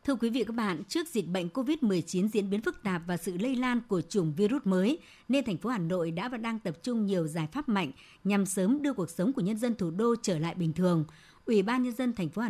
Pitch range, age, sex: 175-230 Hz, 60-79, male